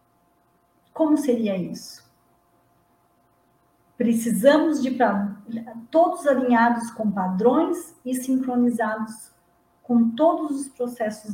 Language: Portuguese